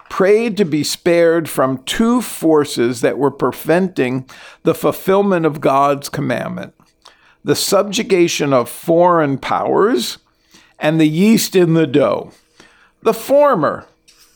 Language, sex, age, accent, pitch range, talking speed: English, male, 50-69, American, 140-195 Hz, 115 wpm